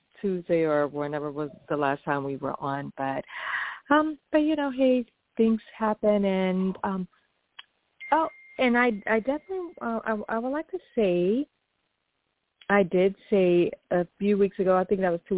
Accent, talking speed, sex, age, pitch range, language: American, 170 wpm, female, 40-59, 155-210 Hz, English